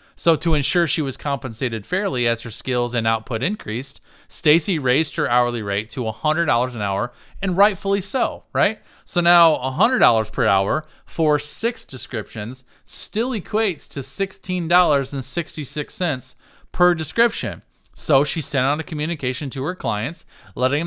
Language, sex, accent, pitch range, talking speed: English, male, American, 120-160 Hz, 145 wpm